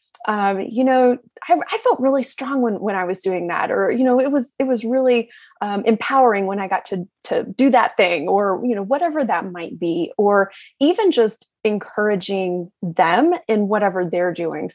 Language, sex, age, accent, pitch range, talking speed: English, female, 20-39, American, 185-245 Hz, 195 wpm